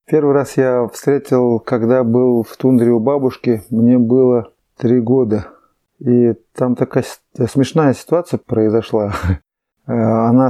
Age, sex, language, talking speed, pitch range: 30-49, male, Russian, 120 wpm, 120-145 Hz